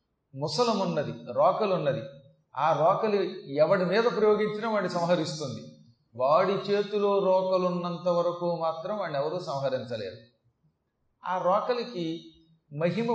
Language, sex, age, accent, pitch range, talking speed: Telugu, male, 40-59, native, 160-200 Hz, 90 wpm